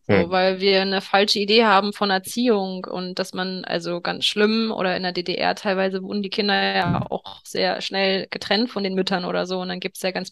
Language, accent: German, German